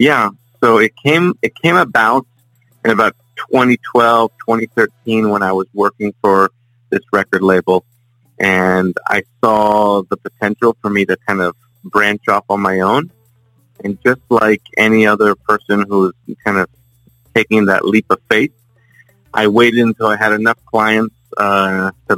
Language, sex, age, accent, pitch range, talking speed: English, male, 40-59, American, 100-120 Hz, 155 wpm